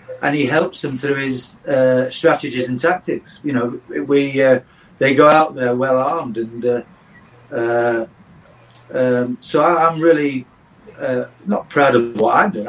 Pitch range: 120-140 Hz